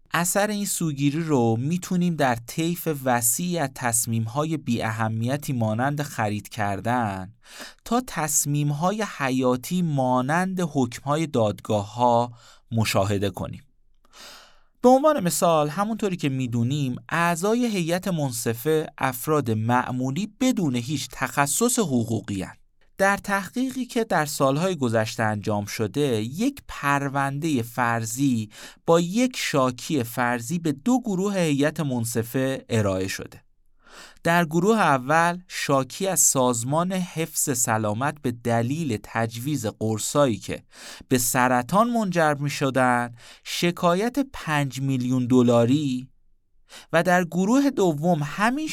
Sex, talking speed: male, 110 wpm